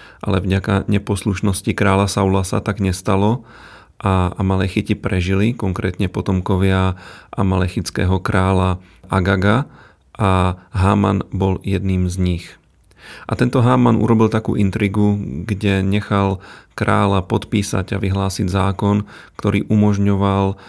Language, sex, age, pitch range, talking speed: Slovak, male, 40-59, 95-105 Hz, 105 wpm